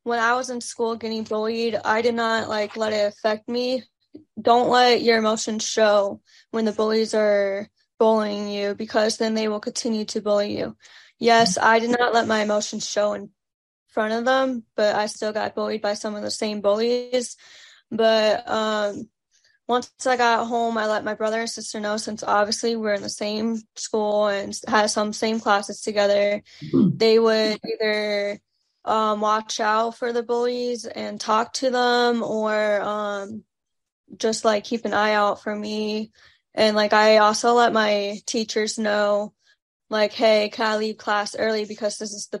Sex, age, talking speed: female, 10-29, 175 wpm